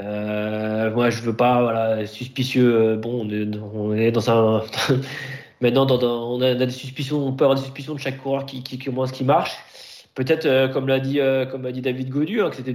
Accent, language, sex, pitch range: French, French, male, 115-140 Hz